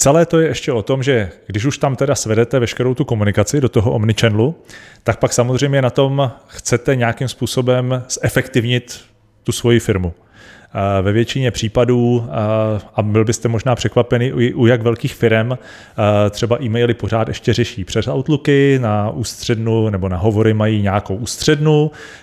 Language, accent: Czech, native